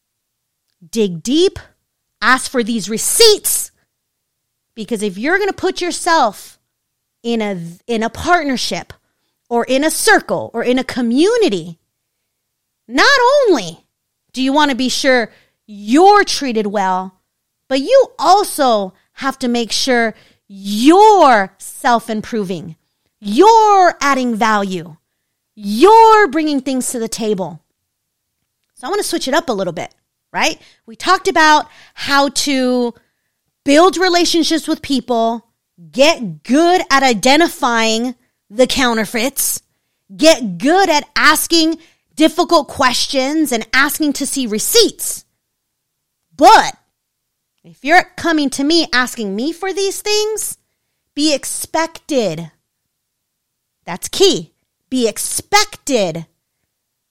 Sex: female